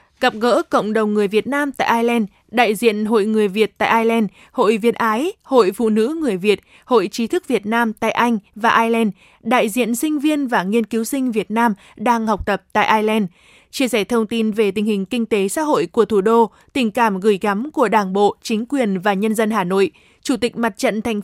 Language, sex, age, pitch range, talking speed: Vietnamese, female, 20-39, 215-260 Hz, 230 wpm